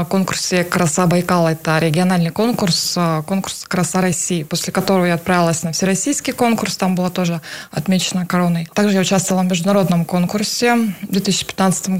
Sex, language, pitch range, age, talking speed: female, Russian, 170-195 Hz, 20-39, 145 wpm